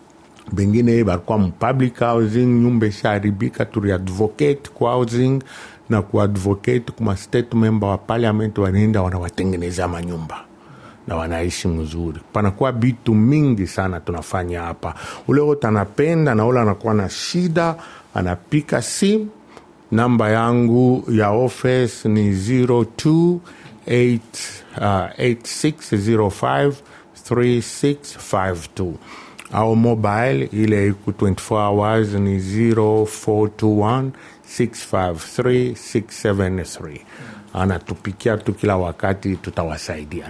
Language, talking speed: Swahili, 80 wpm